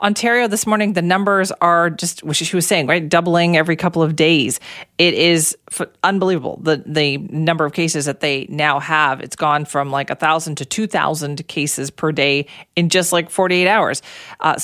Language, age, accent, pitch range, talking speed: English, 40-59, American, 150-195 Hz, 185 wpm